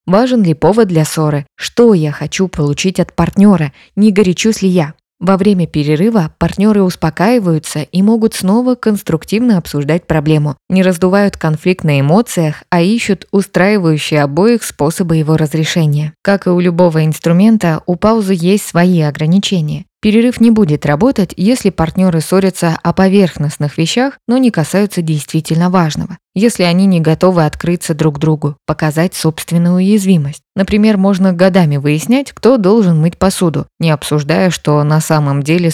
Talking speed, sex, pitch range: 145 wpm, female, 155-195 Hz